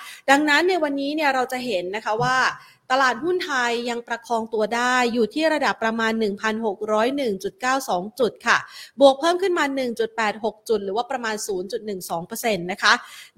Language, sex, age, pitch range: Thai, female, 30-49, 205-260 Hz